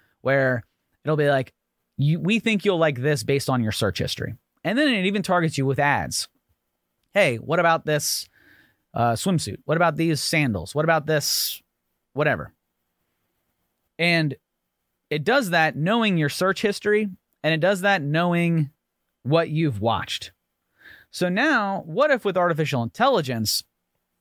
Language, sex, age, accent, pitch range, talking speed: English, male, 30-49, American, 130-180 Hz, 145 wpm